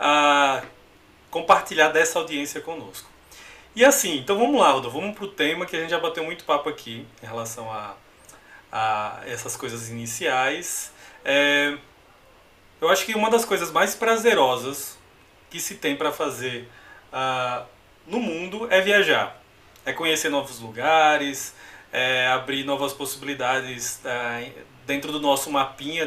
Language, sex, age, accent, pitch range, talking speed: Portuguese, male, 20-39, Brazilian, 130-170 Hz, 145 wpm